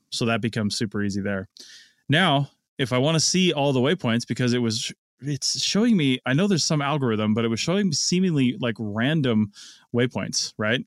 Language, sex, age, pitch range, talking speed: English, male, 20-39, 110-135 Hz, 195 wpm